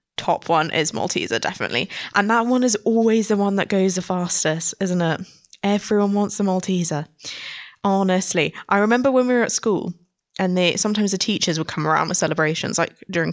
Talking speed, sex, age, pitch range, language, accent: 190 wpm, female, 10-29, 170-205 Hz, English, British